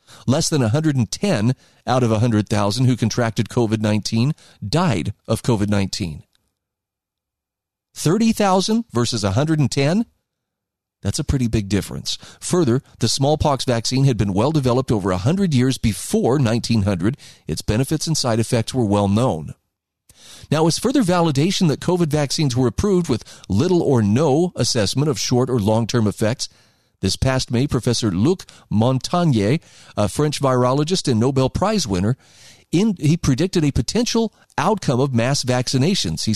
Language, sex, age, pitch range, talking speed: English, male, 40-59, 110-150 Hz, 130 wpm